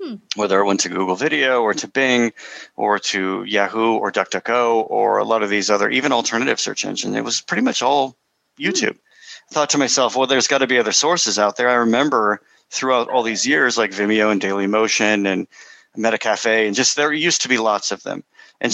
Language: English